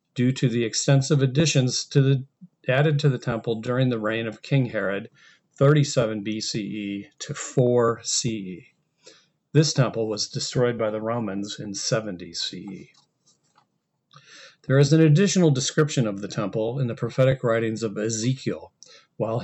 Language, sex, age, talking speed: English, male, 40-59, 145 wpm